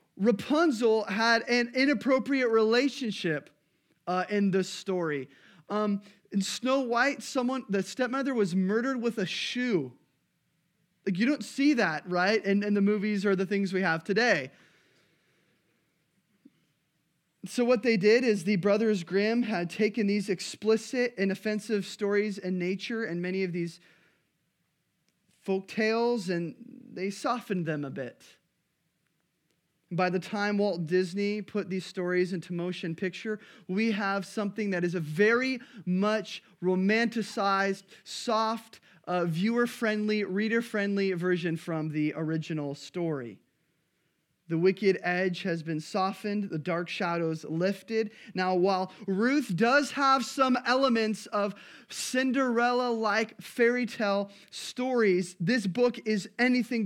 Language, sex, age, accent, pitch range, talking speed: English, male, 20-39, American, 180-225 Hz, 130 wpm